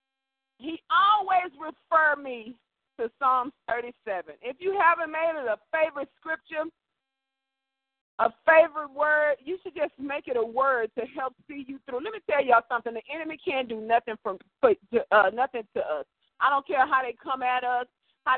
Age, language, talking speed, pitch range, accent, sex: 40-59, English, 185 wpm, 250-340 Hz, American, female